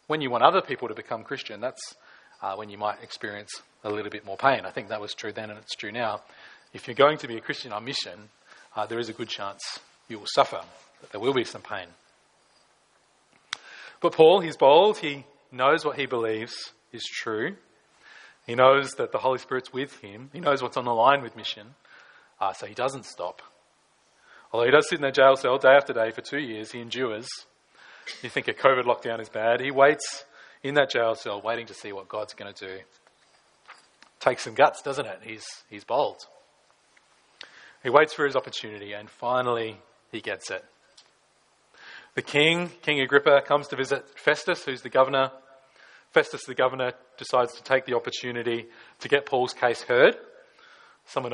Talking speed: 190 wpm